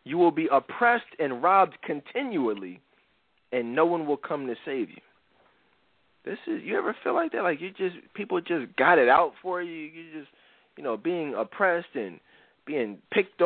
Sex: male